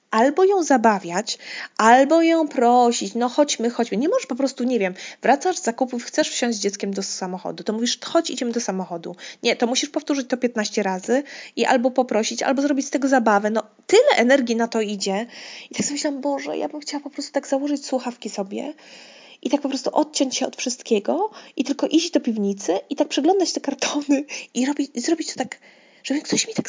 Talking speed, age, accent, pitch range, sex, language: 205 wpm, 20-39, native, 190-275 Hz, female, Polish